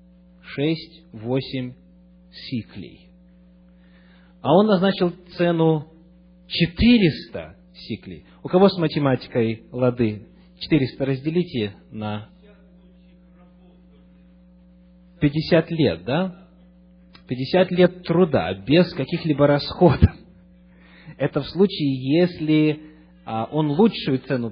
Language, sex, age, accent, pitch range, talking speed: Russian, male, 30-49, native, 115-180 Hz, 80 wpm